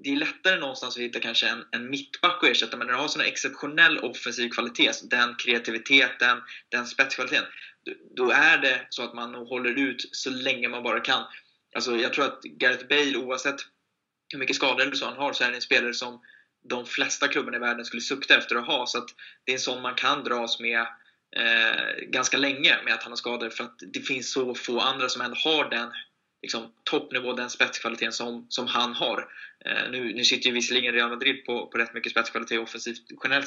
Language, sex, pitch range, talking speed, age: Swedish, male, 120-140 Hz, 215 wpm, 20-39